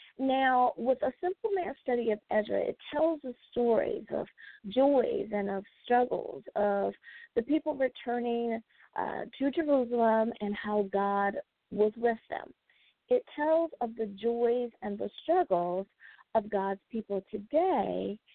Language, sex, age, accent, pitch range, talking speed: English, female, 40-59, American, 205-290 Hz, 135 wpm